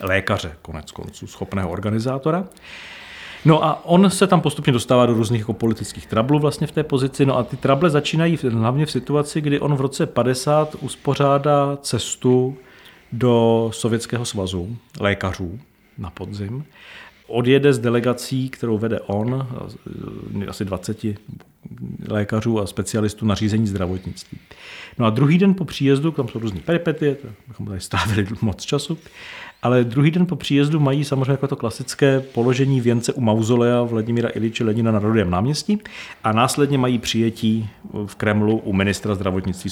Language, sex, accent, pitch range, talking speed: Czech, male, native, 105-140 Hz, 150 wpm